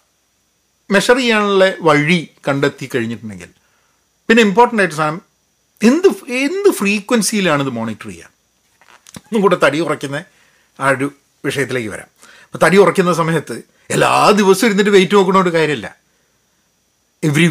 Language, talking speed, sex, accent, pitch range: Malayalam, 115 wpm, male, native, 145-210 Hz